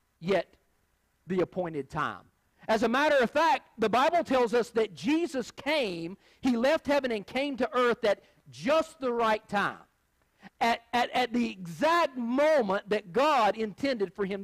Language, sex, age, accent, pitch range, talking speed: English, male, 50-69, American, 200-265 Hz, 160 wpm